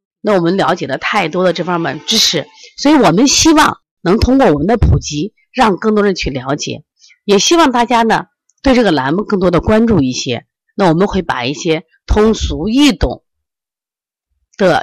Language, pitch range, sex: Chinese, 165-260 Hz, female